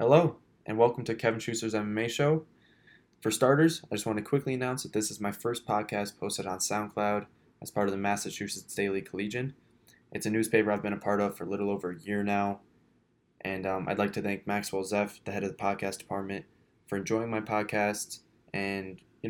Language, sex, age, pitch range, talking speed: English, male, 20-39, 100-115 Hz, 210 wpm